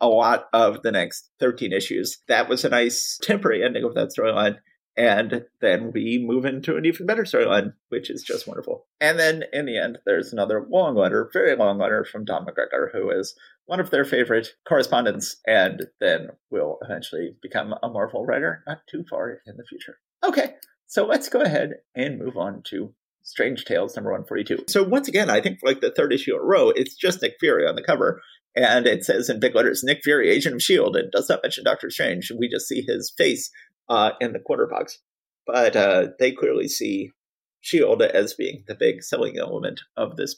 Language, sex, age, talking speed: English, male, 30-49, 205 wpm